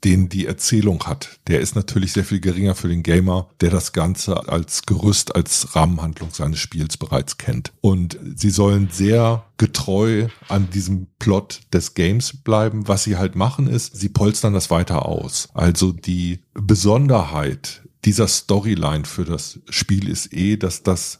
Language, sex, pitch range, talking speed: German, male, 90-115 Hz, 160 wpm